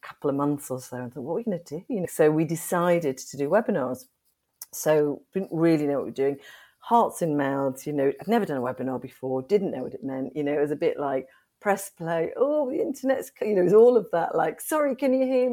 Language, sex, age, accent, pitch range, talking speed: English, female, 40-59, British, 140-215 Hz, 270 wpm